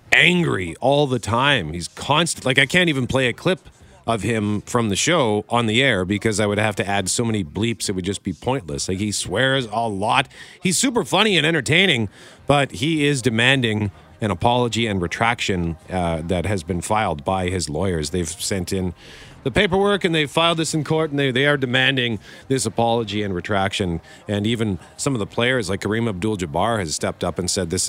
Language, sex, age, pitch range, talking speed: English, male, 40-59, 100-135 Hz, 205 wpm